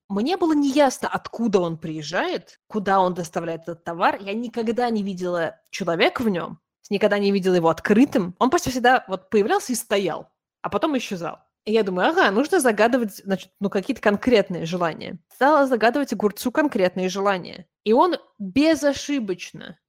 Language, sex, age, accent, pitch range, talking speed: Russian, female, 20-39, native, 180-250 Hz, 155 wpm